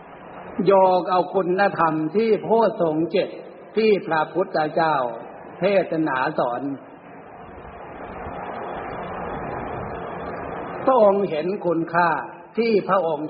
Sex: male